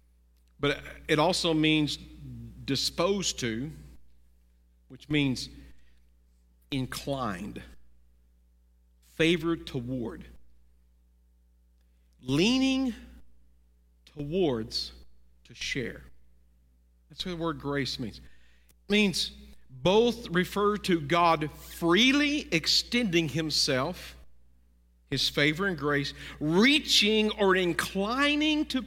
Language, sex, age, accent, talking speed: English, male, 50-69, American, 80 wpm